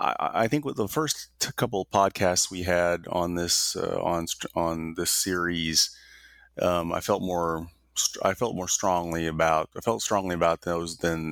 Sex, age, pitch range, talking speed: male, 30-49, 85-100 Hz, 170 wpm